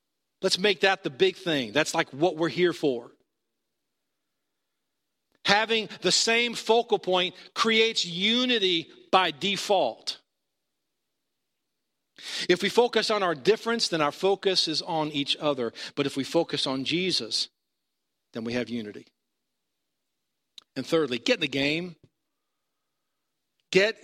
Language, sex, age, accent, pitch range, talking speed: English, male, 50-69, American, 155-215 Hz, 125 wpm